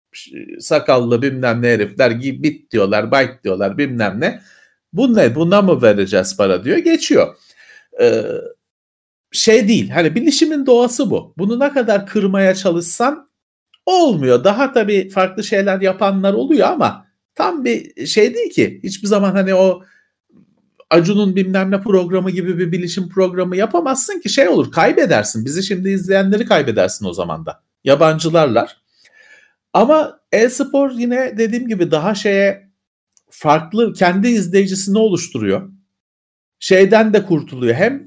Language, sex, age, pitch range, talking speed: Turkish, male, 50-69, 170-250 Hz, 130 wpm